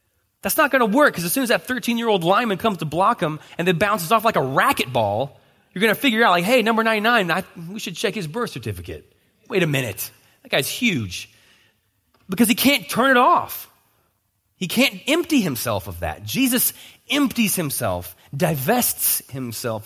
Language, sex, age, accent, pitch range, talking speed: English, male, 30-49, American, 125-205 Hz, 185 wpm